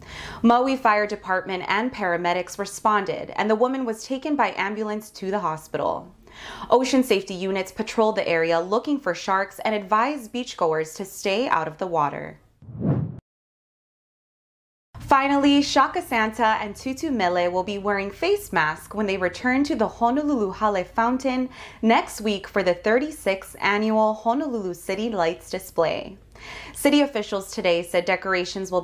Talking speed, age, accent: 145 wpm, 20-39, American